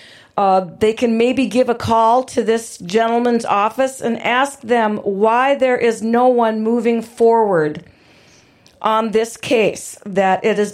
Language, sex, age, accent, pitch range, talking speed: English, female, 50-69, American, 185-250 Hz, 150 wpm